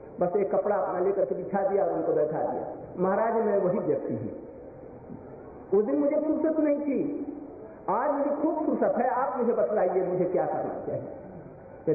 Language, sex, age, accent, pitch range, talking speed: Hindi, male, 50-69, native, 200-280 Hz, 125 wpm